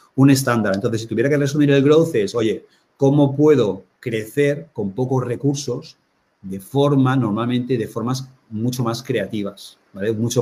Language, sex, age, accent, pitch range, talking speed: Spanish, male, 40-59, Spanish, 110-140 Hz, 155 wpm